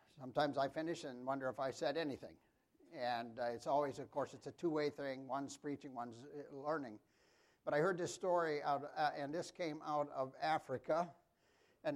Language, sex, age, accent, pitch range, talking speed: English, male, 60-79, American, 140-175 Hz, 185 wpm